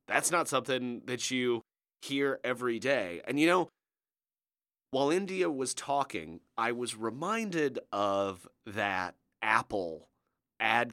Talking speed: 120 wpm